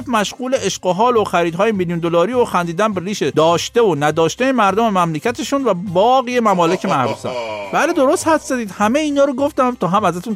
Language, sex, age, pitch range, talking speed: Persian, male, 50-69, 155-225 Hz, 180 wpm